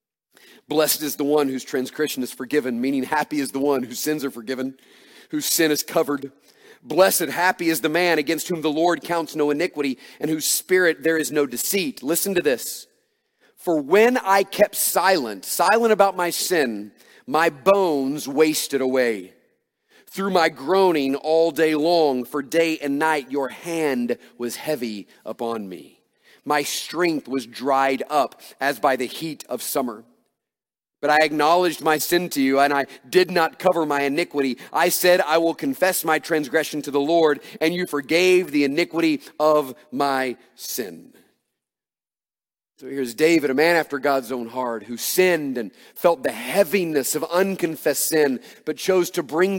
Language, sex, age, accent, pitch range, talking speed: English, male, 40-59, American, 140-175 Hz, 165 wpm